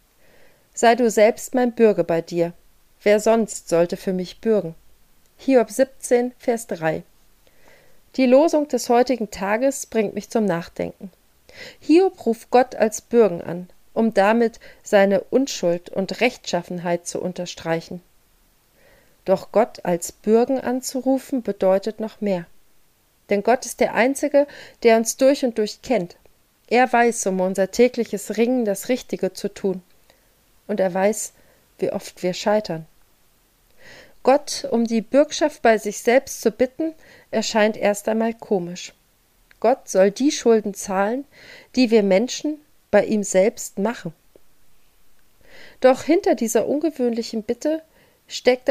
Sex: female